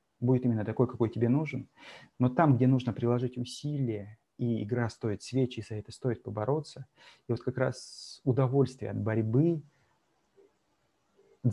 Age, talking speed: 30-49, 150 wpm